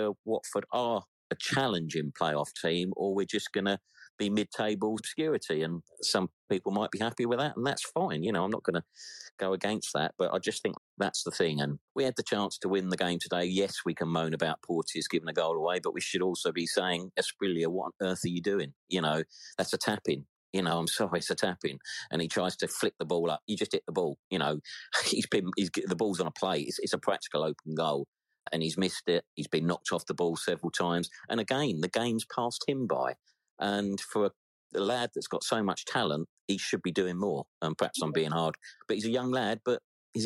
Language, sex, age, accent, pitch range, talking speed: English, male, 40-59, British, 85-105 Hz, 240 wpm